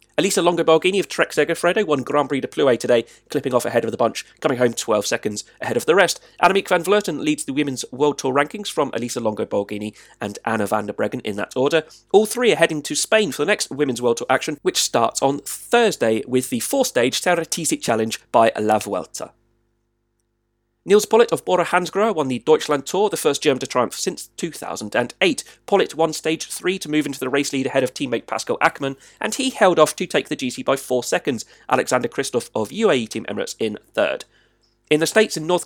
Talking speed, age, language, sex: 210 wpm, 30-49, English, male